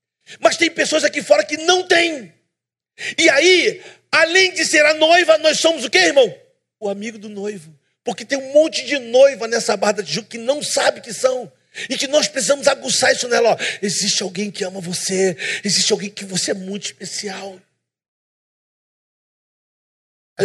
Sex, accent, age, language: male, Brazilian, 40-59, Portuguese